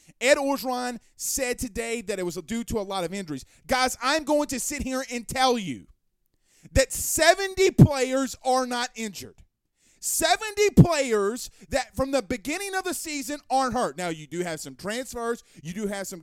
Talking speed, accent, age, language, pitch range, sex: 180 wpm, American, 30-49, English, 210-320 Hz, male